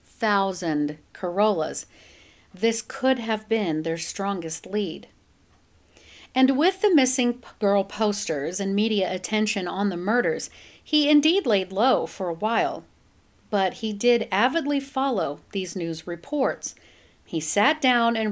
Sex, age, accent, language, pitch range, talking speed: female, 50-69, American, English, 180-235 Hz, 130 wpm